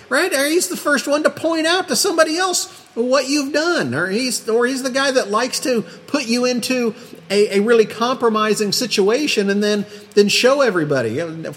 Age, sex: 50-69, male